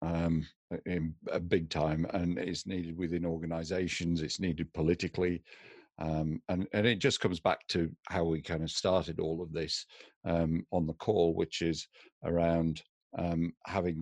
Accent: British